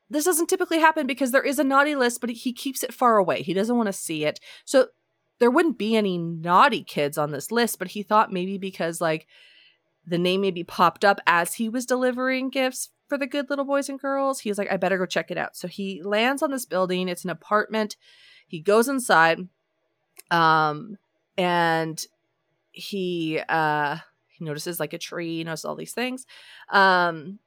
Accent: American